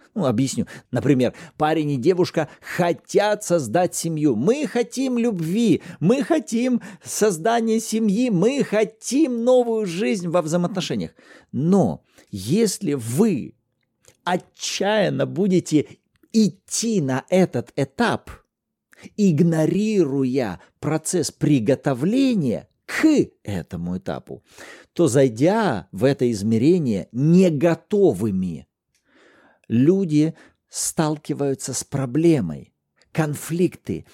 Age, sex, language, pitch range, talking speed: 50-69, male, Russian, 140-205 Hz, 85 wpm